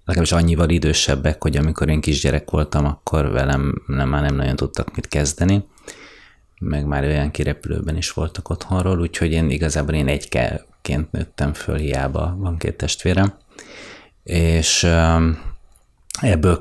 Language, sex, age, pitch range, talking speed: Hungarian, male, 30-49, 75-90 Hz, 135 wpm